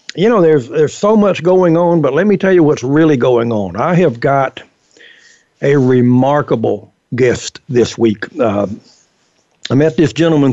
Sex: male